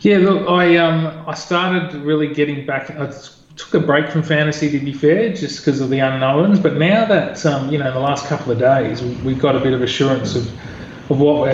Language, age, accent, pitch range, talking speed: English, 30-49, Australian, 130-150 Hz, 240 wpm